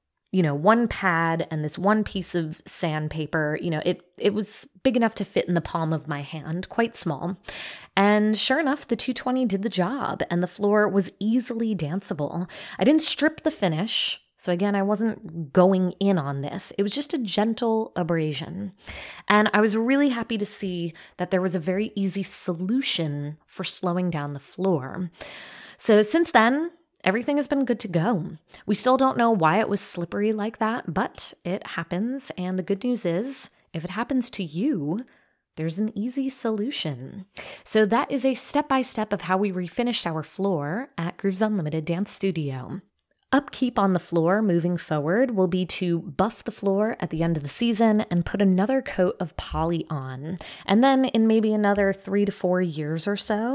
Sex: female